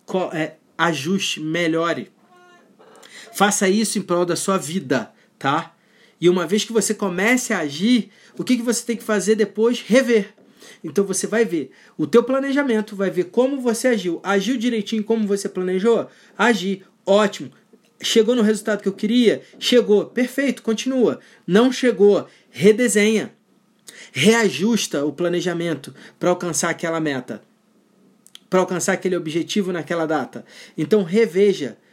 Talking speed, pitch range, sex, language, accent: 140 wpm, 185-225 Hz, male, Portuguese, Brazilian